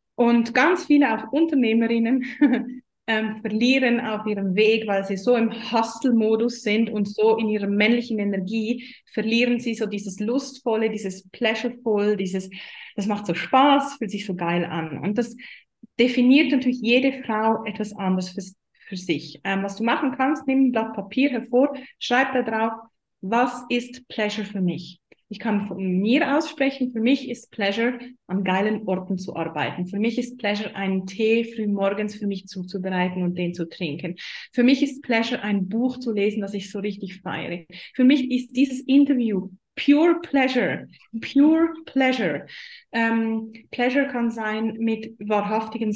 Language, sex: German, female